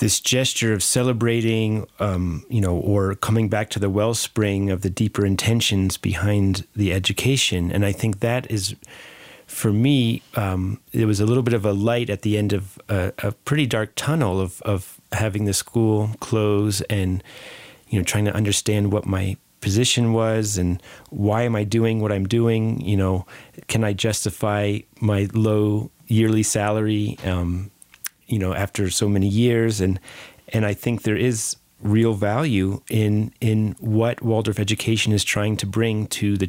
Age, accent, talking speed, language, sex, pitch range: 30-49, American, 170 wpm, English, male, 100-115 Hz